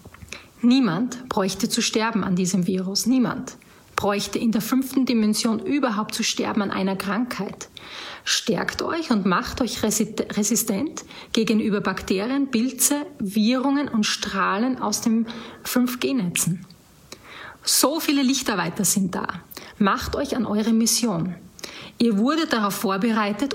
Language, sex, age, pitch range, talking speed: German, female, 30-49, 205-255 Hz, 120 wpm